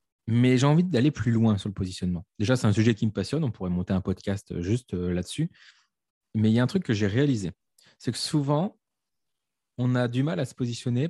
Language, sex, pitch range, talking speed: French, male, 100-125 Hz, 225 wpm